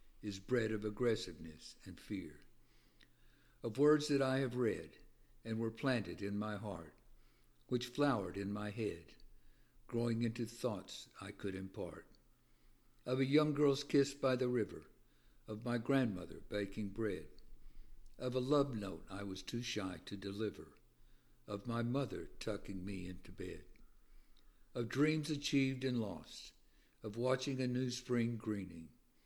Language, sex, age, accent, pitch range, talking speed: English, male, 60-79, American, 100-125 Hz, 145 wpm